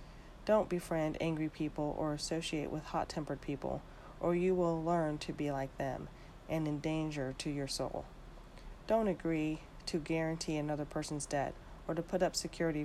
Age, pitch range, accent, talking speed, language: 40-59, 145-160 Hz, American, 165 wpm, English